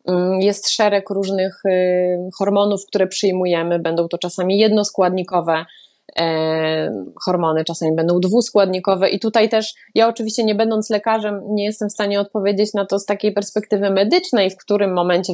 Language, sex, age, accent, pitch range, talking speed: Polish, female, 20-39, native, 180-215 Hz, 145 wpm